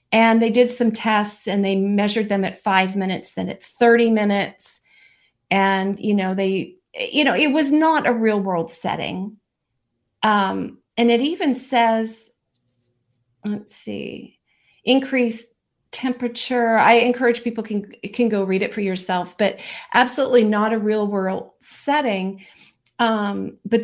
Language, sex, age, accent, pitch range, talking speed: English, female, 40-59, American, 195-240 Hz, 145 wpm